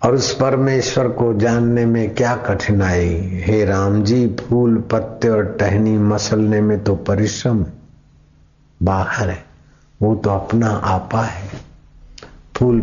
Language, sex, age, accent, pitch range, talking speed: Hindi, male, 60-79, native, 90-110 Hz, 125 wpm